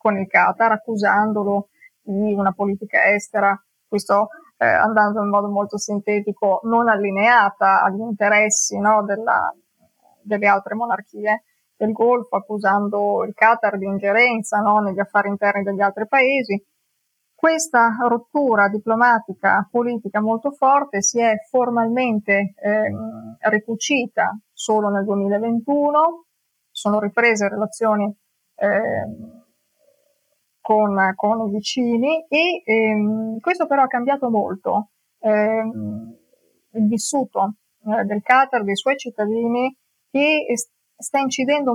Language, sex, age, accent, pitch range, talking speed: Italian, female, 20-39, native, 205-235 Hz, 115 wpm